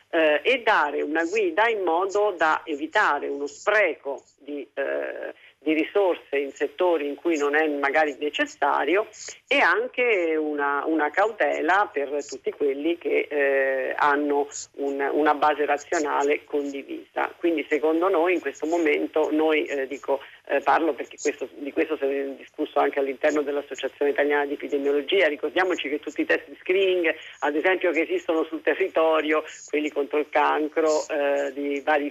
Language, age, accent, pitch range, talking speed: Italian, 50-69, native, 145-180 Hz, 155 wpm